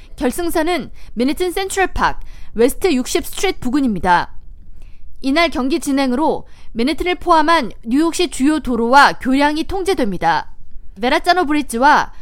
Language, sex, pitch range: Korean, female, 250-355 Hz